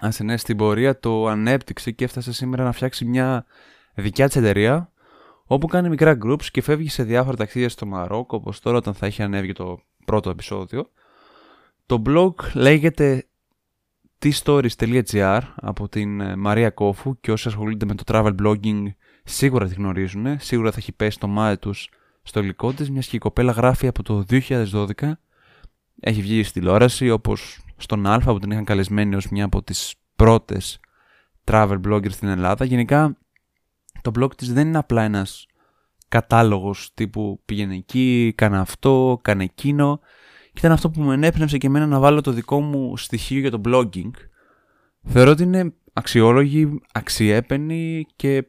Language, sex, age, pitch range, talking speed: Greek, male, 20-39, 105-135 Hz, 160 wpm